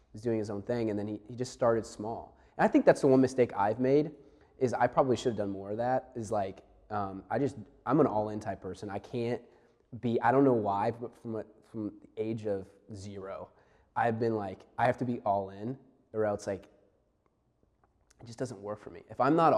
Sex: male